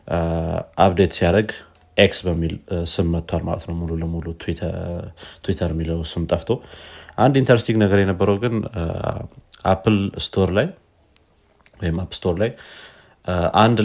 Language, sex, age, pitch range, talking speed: Amharic, male, 30-49, 85-105 Hz, 115 wpm